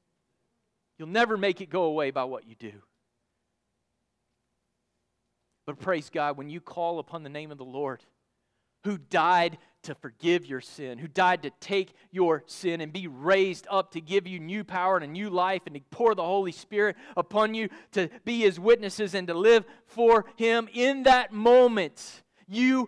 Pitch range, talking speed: 155-220 Hz, 180 wpm